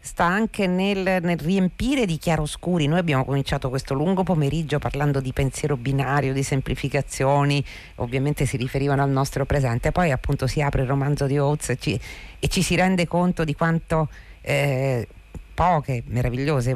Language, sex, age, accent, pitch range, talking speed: Italian, female, 50-69, native, 140-185 Hz, 160 wpm